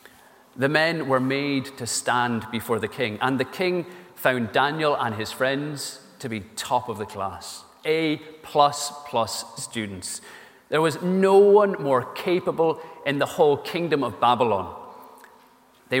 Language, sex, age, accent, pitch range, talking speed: English, male, 30-49, British, 120-165 Hz, 145 wpm